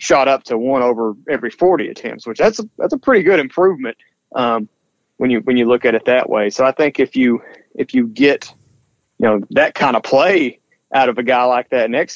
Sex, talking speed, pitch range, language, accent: male, 230 wpm, 120-150 Hz, English, American